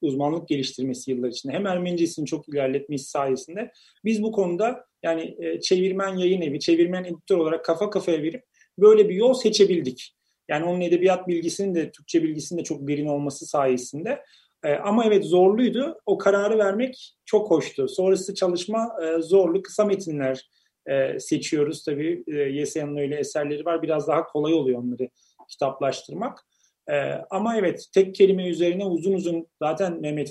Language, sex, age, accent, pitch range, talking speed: Turkish, male, 40-59, native, 150-200 Hz, 150 wpm